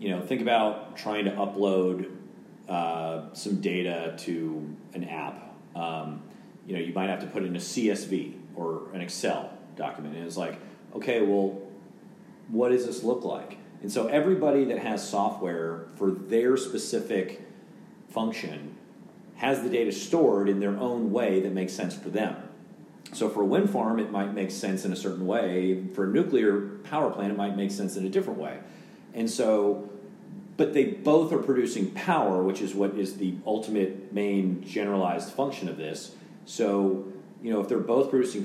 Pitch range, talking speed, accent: 95-115 Hz, 175 wpm, American